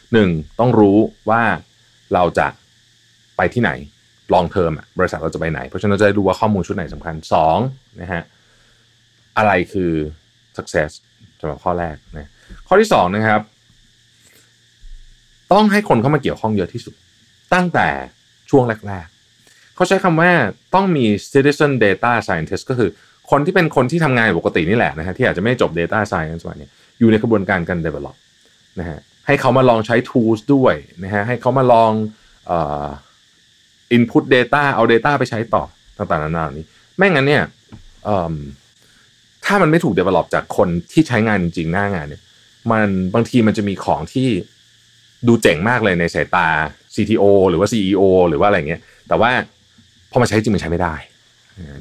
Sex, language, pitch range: male, Thai, 90-120 Hz